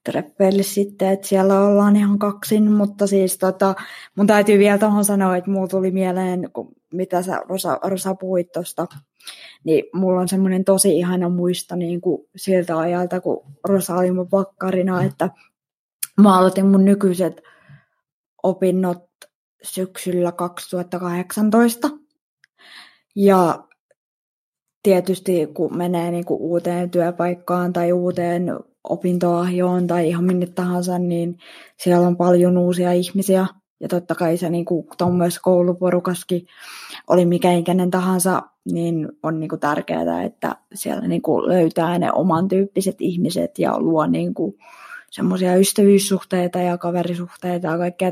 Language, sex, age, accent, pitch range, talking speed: Finnish, female, 20-39, native, 175-190 Hz, 125 wpm